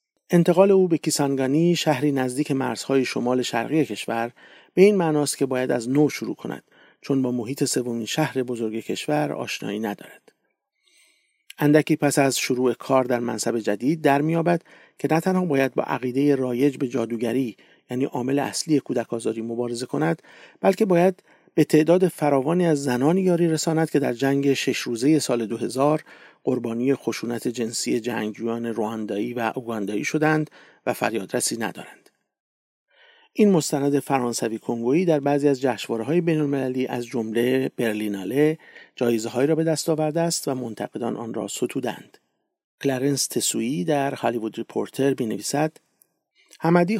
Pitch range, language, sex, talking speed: 120-155 Hz, English, male, 140 wpm